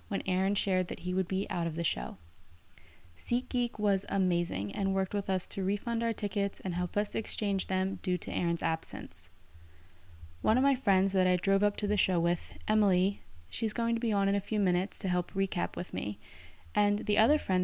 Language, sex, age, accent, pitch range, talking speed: English, female, 20-39, American, 165-210 Hz, 215 wpm